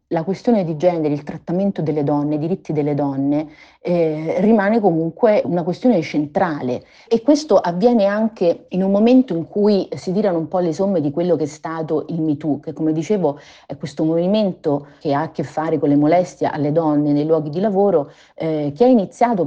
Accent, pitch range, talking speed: native, 145-175 Hz, 195 wpm